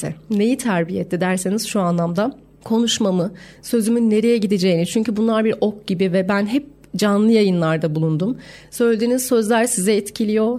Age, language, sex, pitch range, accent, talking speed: 40-59, Turkish, female, 195-235 Hz, native, 140 wpm